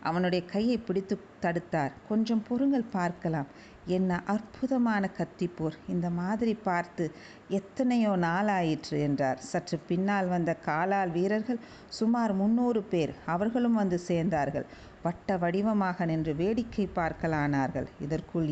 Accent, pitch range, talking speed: native, 170-215 Hz, 105 wpm